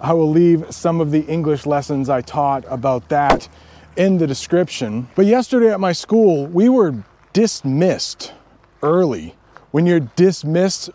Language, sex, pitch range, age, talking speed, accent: English, male, 130-185 Hz, 30-49, 150 wpm, American